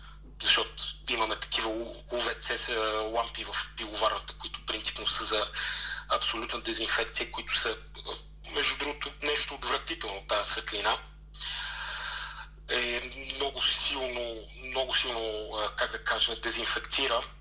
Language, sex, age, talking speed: Bulgarian, male, 40-59, 105 wpm